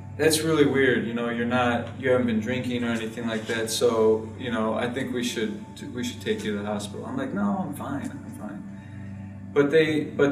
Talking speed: 225 wpm